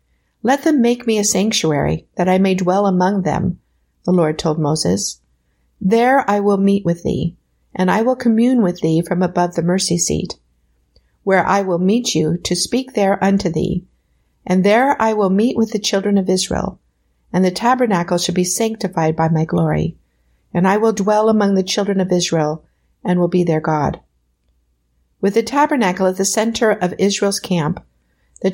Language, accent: English, American